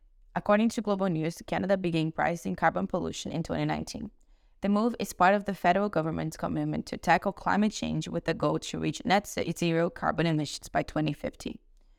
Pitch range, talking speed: 145-190 Hz, 175 wpm